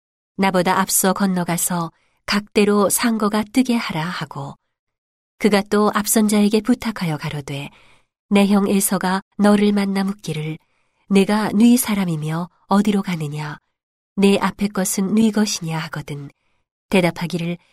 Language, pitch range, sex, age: Korean, 170-210 Hz, female, 40-59